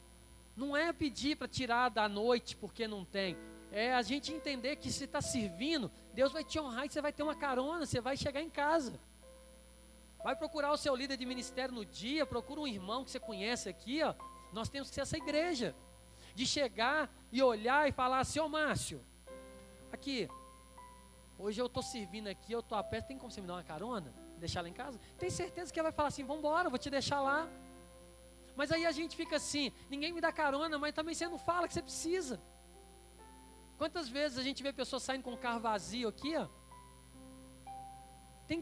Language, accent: Portuguese, Brazilian